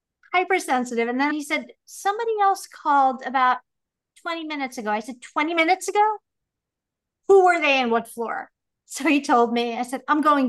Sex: female